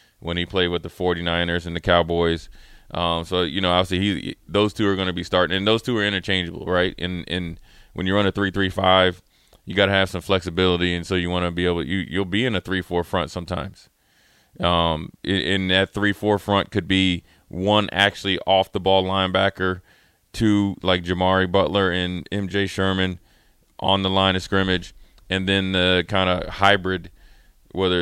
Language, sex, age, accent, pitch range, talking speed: English, male, 20-39, American, 90-95 Hz, 205 wpm